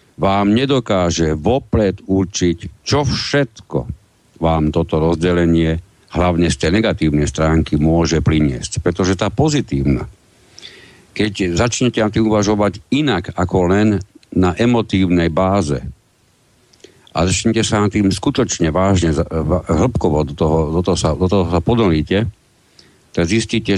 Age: 60-79